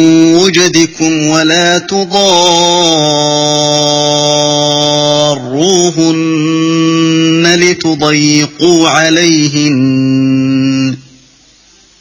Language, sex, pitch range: Arabic, male, 150-175 Hz